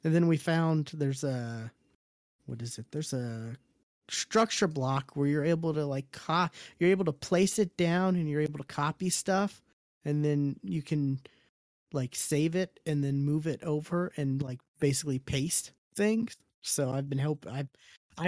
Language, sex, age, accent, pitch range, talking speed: English, male, 20-39, American, 135-160 Hz, 175 wpm